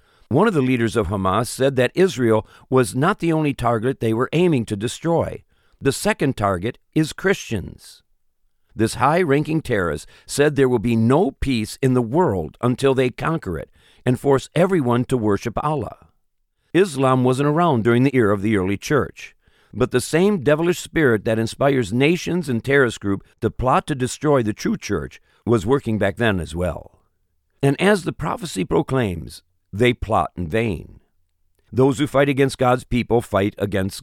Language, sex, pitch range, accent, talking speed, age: English, male, 105-145 Hz, American, 170 wpm, 50-69